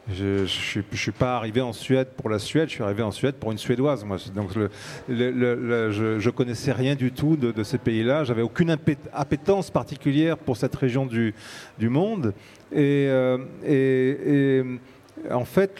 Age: 40-59